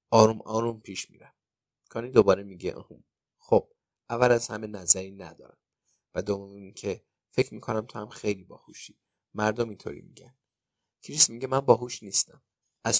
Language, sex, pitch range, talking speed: Persian, male, 100-120 Hz, 150 wpm